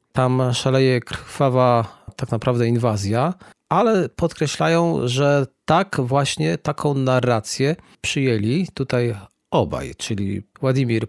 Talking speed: 95 wpm